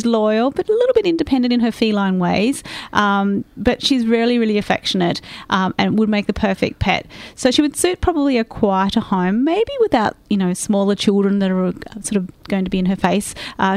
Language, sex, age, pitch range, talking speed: English, female, 30-49, 195-245 Hz, 210 wpm